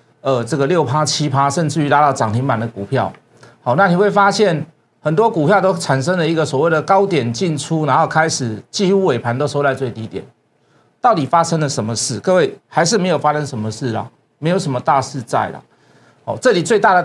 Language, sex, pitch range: Chinese, male, 130-200 Hz